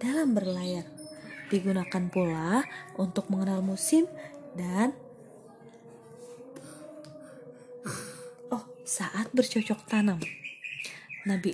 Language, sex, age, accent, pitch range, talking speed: Indonesian, female, 20-39, native, 200-310 Hz, 70 wpm